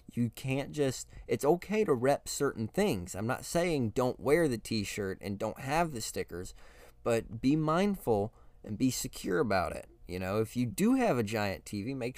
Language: English